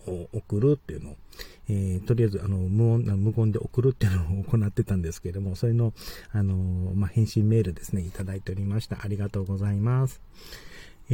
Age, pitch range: 40-59, 100-125 Hz